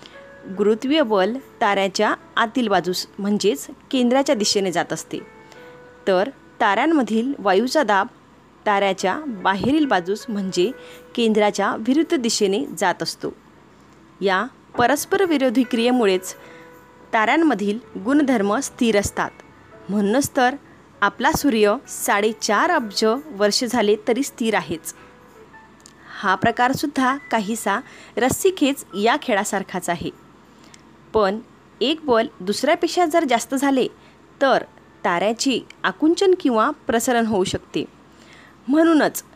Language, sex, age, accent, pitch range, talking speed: Marathi, female, 20-39, native, 200-280 Hz, 100 wpm